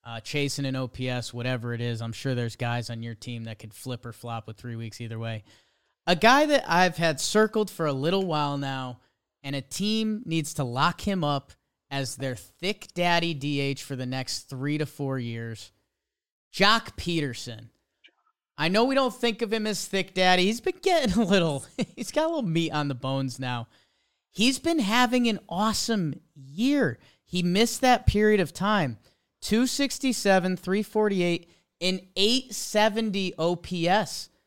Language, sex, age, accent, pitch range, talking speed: English, male, 30-49, American, 135-210 Hz, 170 wpm